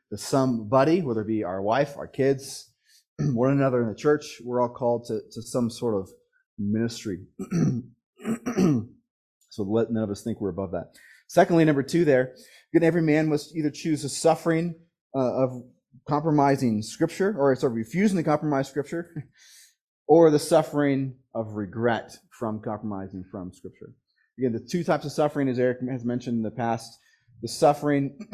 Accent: American